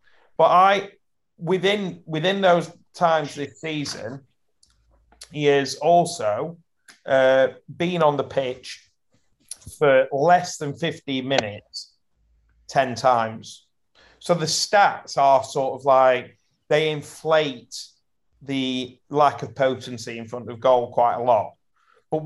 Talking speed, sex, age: 120 wpm, male, 30-49